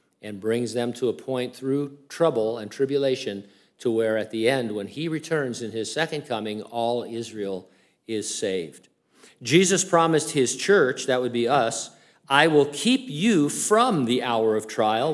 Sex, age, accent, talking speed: male, 50-69, American, 170 wpm